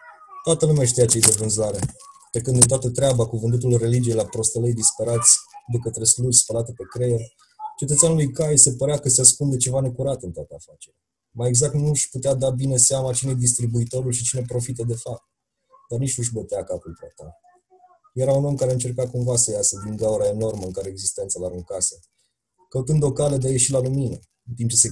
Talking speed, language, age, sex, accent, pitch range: 210 wpm, Romanian, 20-39, male, native, 115-135 Hz